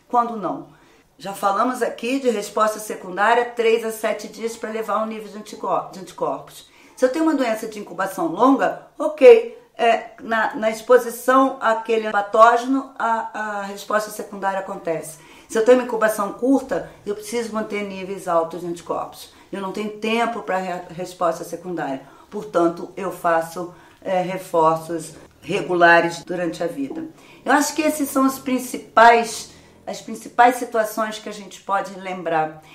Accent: Brazilian